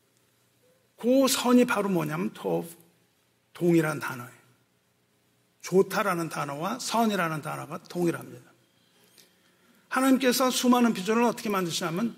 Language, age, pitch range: Korean, 50-69, 175-235 Hz